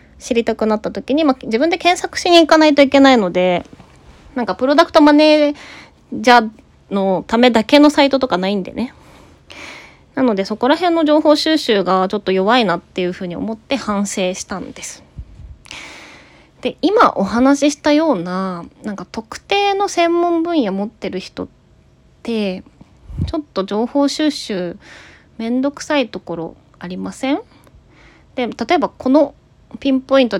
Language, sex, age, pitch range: Japanese, female, 20-39, 185-285 Hz